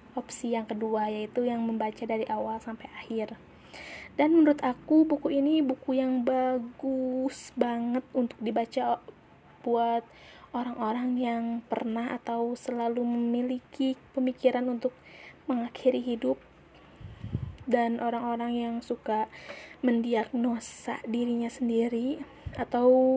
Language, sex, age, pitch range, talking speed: Indonesian, female, 20-39, 230-260 Hz, 105 wpm